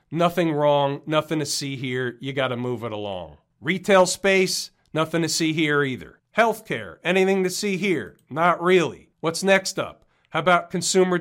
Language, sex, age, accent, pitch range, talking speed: English, male, 40-59, American, 145-190 Hz, 170 wpm